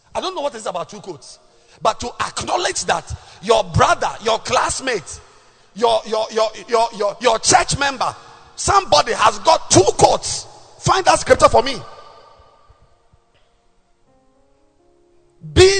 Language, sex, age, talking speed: English, male, 50-69, 135 wpm